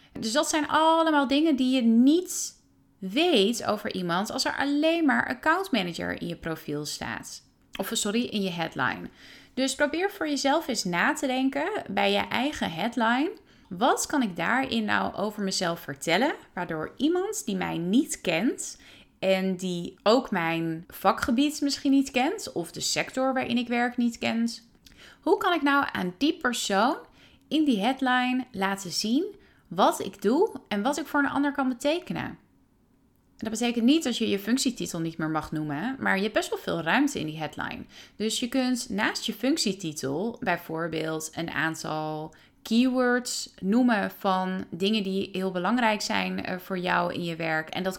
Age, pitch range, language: 30-49, 185-275 Hz, Dutch